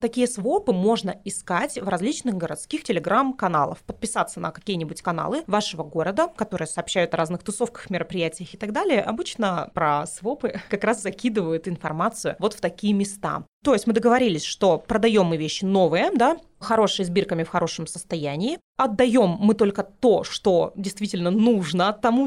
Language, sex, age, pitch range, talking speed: Russian, female, 20-39, 185-230 Hz, 155 wpm